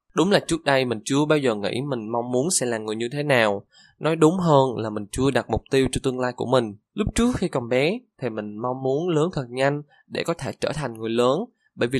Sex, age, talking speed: male, 20-39, 265 wpm